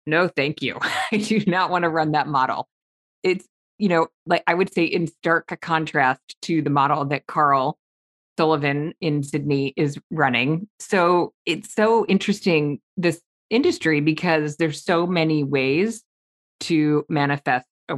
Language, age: English, 20-39